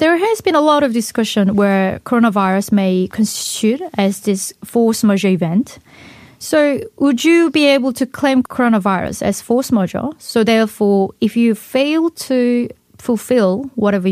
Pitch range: 195-250 Hz